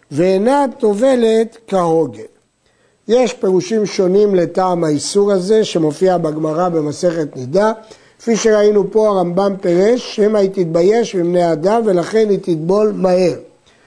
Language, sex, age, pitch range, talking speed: Hebrew, male, 60-79, 175-220 Hz, 115 wpm